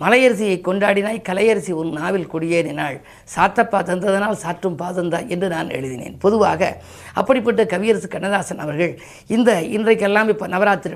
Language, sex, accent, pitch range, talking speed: Tamil, female, native, 170-215 Hz, 125 wpm